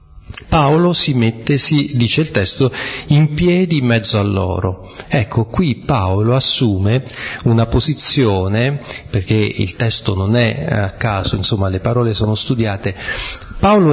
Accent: native